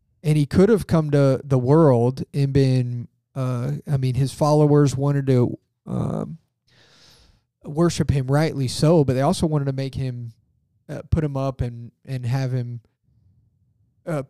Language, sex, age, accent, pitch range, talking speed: English, male, 30-49, American, 120-150 Hz, 160 wpm